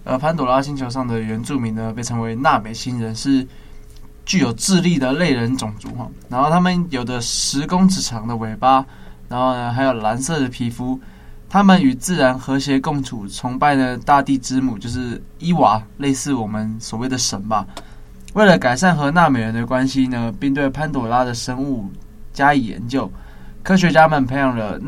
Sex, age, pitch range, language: male, 20-39, 115-145 Hz, Chinese